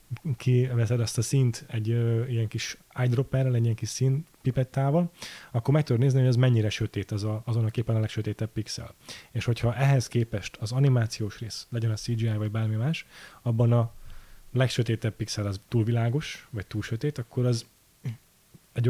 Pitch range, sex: 110-125 Hz, male